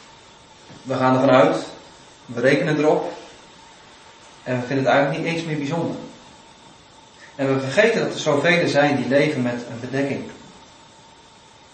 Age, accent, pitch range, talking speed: 30-49, Dutch, 135-185 Hz, 150 wpm